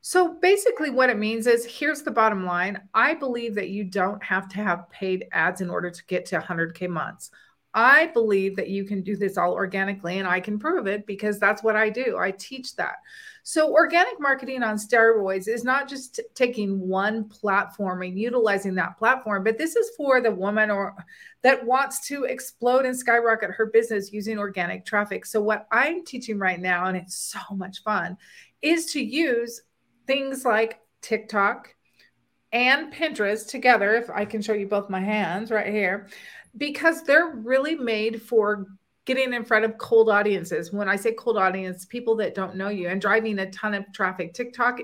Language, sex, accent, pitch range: English, female, American, 195-255 Hz